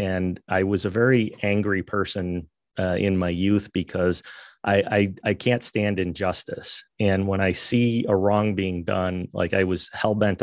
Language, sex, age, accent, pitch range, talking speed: English, male, 30-49, American, 90-105 Hz, 175 wpm